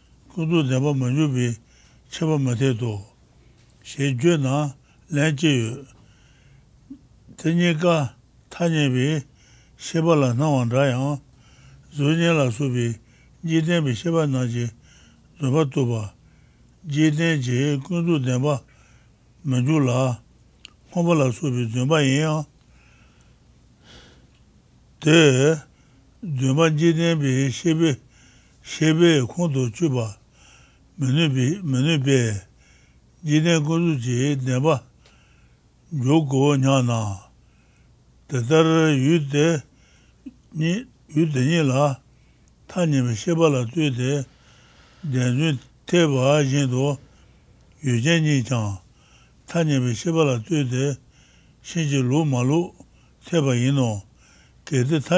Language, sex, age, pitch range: English, male, 60-79, 125-160 Hz